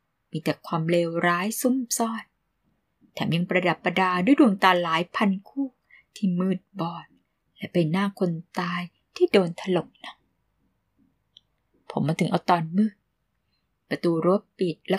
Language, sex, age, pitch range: Thai, female, 20-39, 170-205 Hz